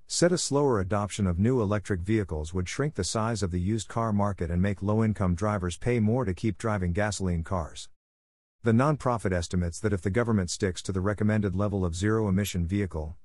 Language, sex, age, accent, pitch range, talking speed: English, male, 50-69, American, 90-115 Hz, 195 wpm